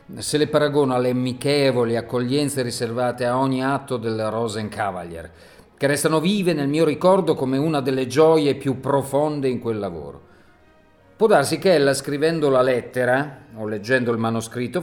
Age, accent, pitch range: 40-59, native, 110-145 Hz